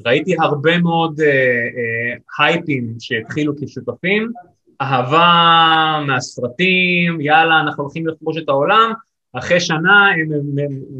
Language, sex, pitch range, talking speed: Hebrew, male, 130-175 Hz, 110 wpm